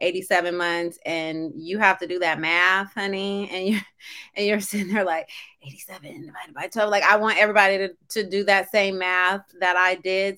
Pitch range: 170-215 Hz